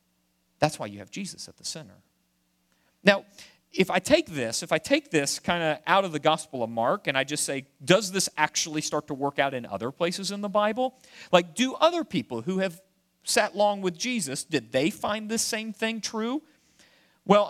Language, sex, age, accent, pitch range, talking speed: English, male, 40-59, American, 145-210 Hz, 205 wpm